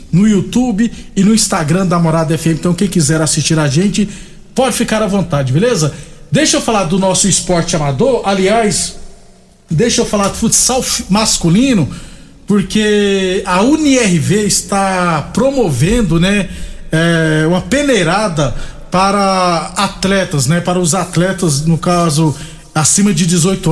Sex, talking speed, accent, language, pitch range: male, 135 wpm, Brazilian, Portuguese, 165-215 Hz